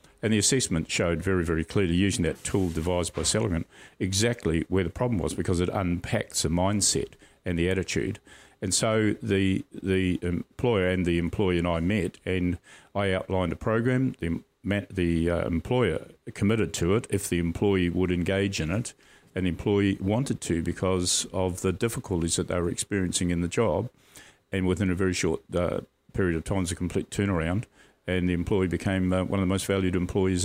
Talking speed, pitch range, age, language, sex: 190 wpm, 85-100 Hz, 50-69, English, male